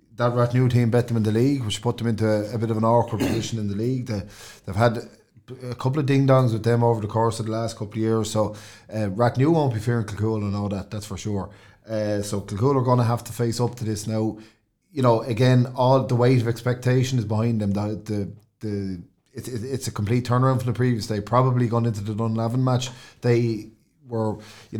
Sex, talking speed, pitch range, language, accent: male, 240 wpm, 105-120 Hz, English, Irish